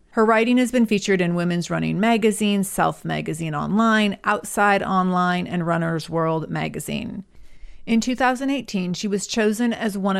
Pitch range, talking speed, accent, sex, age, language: 185-230 Hz, 145 wpm, American, female, 30-49, English